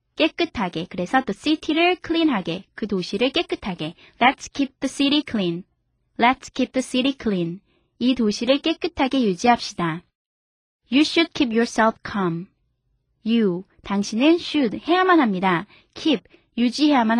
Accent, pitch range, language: native, 195-290 Hz, Korean